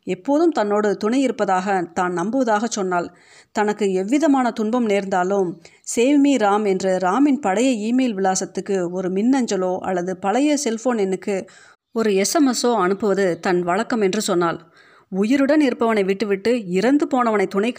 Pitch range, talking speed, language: 190-240 Hz, 125 wpm, Tamil